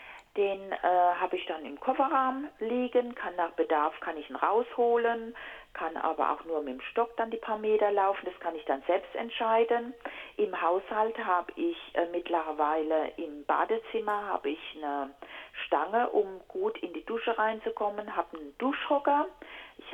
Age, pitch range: 40-59, 175-240 Hz